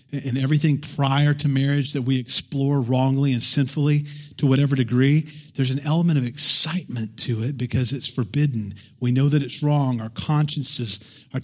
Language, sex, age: English, male, 40-59